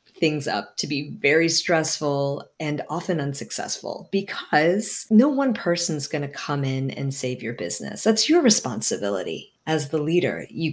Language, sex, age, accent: English, female, 40-59, American